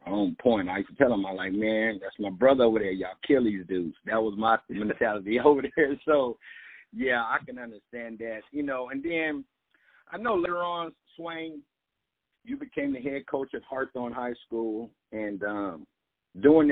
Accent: American